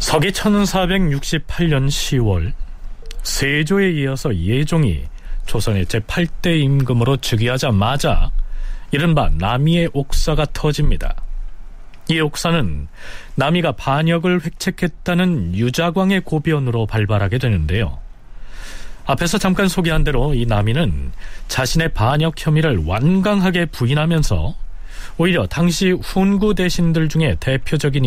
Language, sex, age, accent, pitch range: Korean, male, 40-59, native, 100-160 Hz